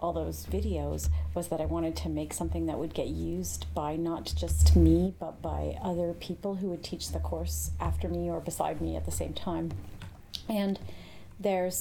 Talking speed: 195 wpm